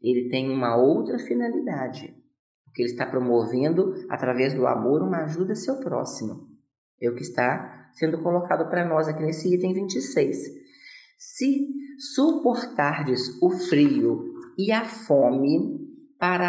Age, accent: 40-59, Brazilian